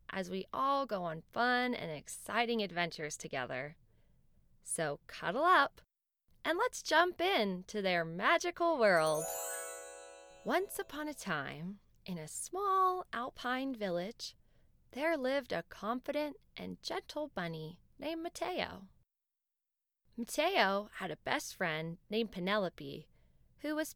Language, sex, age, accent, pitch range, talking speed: English, female, 20-39, American, 185-295 Hz, 120 wpm